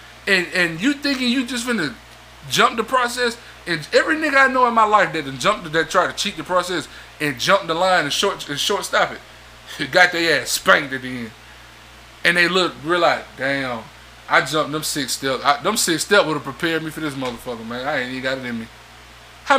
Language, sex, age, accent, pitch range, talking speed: English, male, 20-39, American, 155-230 Hz, 220 wpm